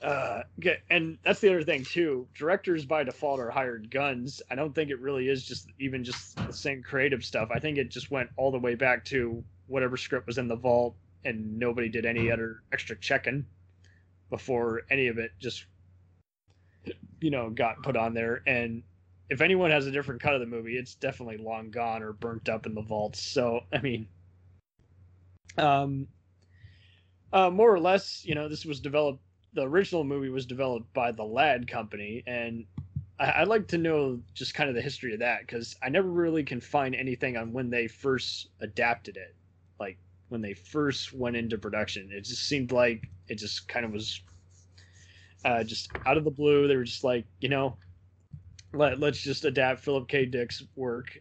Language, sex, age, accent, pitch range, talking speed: English, male, 20-39, American, 100-135 Hz, 190 wpm